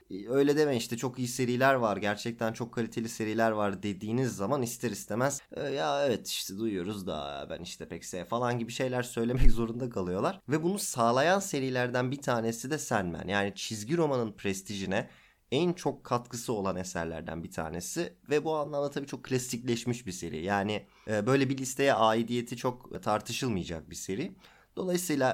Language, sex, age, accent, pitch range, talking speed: Turkish, male, 30-49, native, 100-130 Hz, 160 wpm